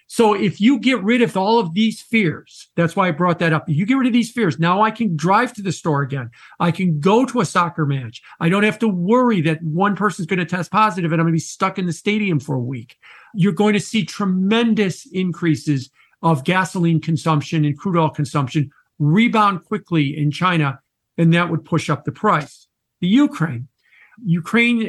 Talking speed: 215 wpm